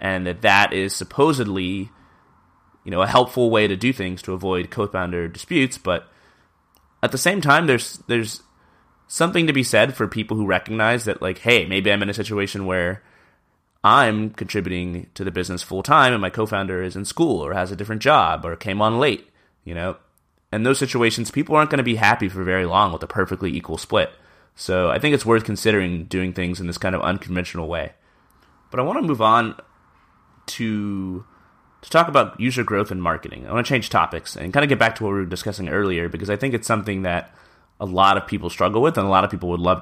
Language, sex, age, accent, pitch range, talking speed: English, male, 20-39, American, 90-110 Hz, 220 wpm